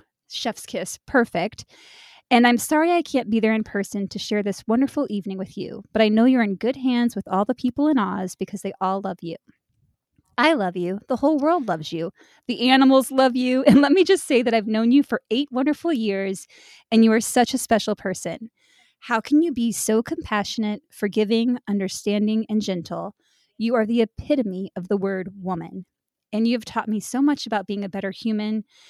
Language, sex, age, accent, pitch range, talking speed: English, female, 20-39, American, 200-265 Hz, 205 wpm